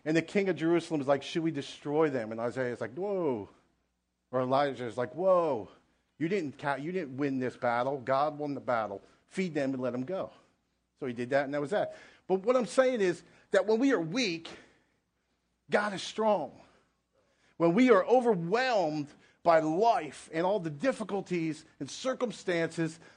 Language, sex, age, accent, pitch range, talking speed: English, male, 50-69, American, 145-205 Hz, 185 wpm